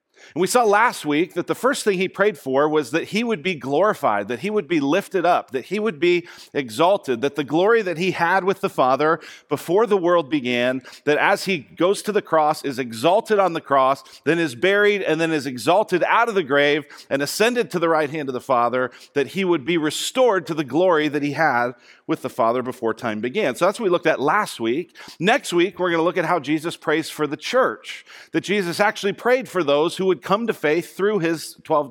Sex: male